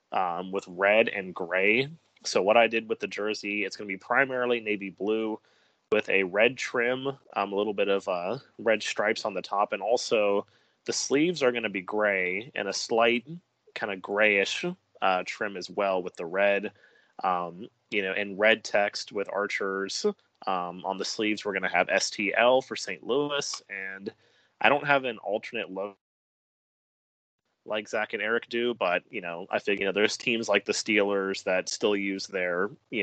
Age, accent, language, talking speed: 20-39, American, English, 190 wpm